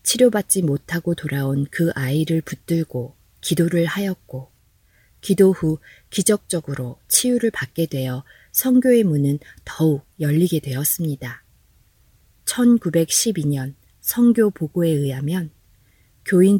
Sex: female